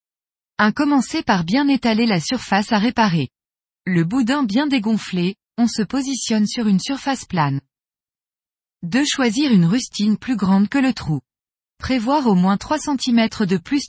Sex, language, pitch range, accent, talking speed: female, French, 180-255 Hz, French, 155 wpm